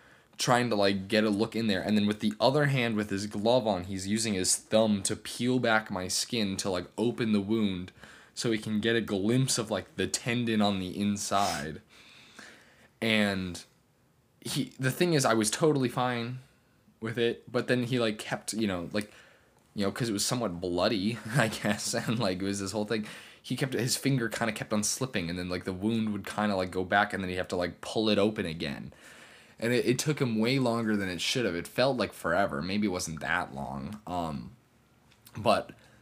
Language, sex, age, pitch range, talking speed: English, male, 10-29, 95-115 Hz, 220 wpm